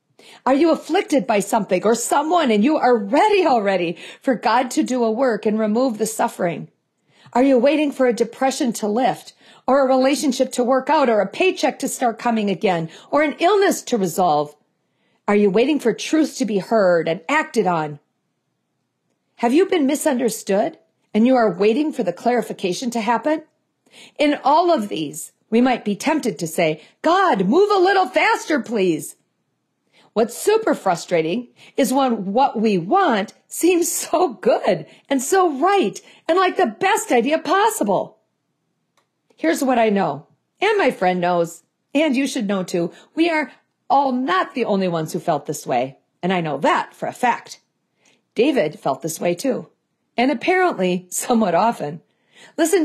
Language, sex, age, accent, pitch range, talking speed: English, female, 50-69, American, 205-310 Hz, 170 wpm